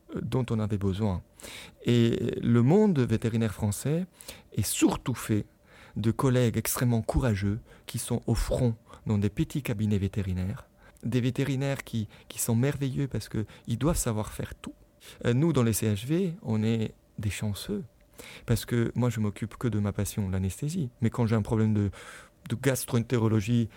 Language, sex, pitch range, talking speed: French, male, 105-130 Hz, 160 wpm